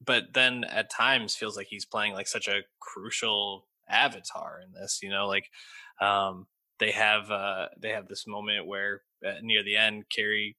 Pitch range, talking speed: 100-120 Hz, 175 wpm